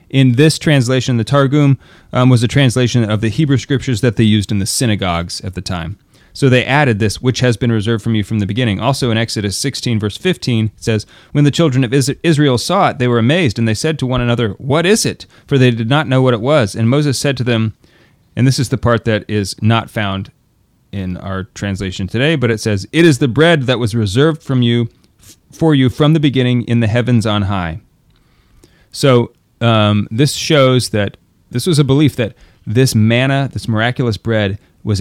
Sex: male